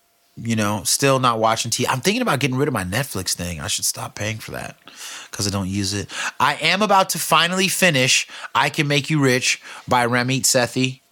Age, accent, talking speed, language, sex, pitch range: 30-49, American, 215 wpm, English, male, 115-155 Hz